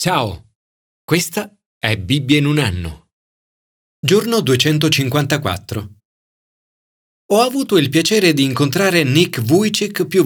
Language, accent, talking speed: Italian, native, 105 wpm